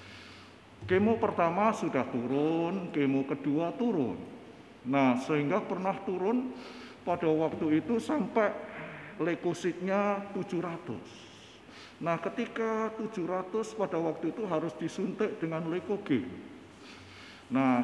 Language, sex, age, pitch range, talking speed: Indonesian, male, 50-69, 135-220 Hz, 95 wpm